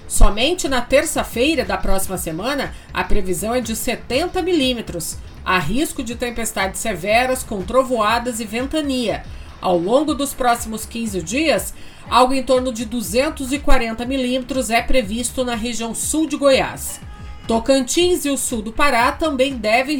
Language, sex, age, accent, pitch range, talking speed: Portuguese, female, 40-59, Brazilian, 230-295 Hz, 145 wpm